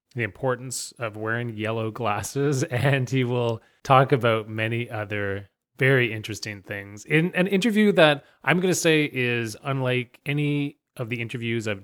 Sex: male